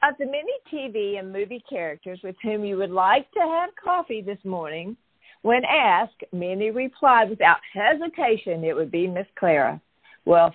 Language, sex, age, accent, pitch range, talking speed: English, female, 50-69, American, 185-250 Hz, 165 wpm